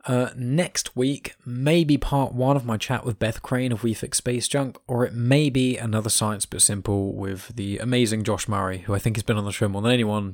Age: 20-39